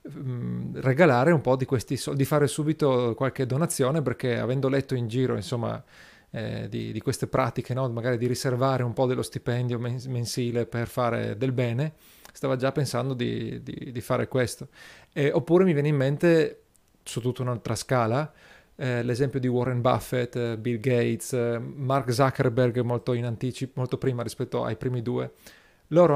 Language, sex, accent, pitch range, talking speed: Italian, male, native, 120-145 Hz, 170 wpm